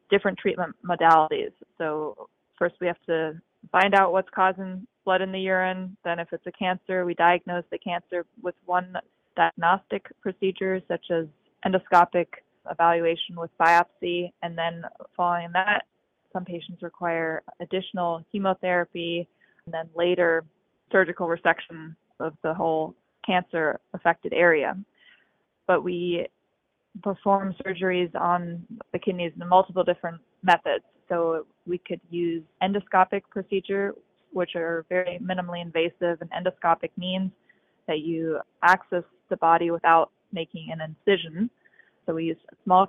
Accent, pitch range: American, 165-185 Hz